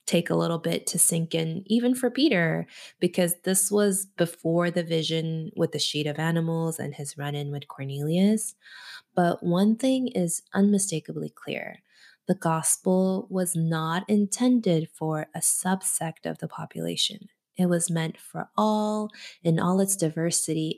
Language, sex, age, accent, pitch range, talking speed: English, female, 20-39, American, 165-215 Hz, 150 wpm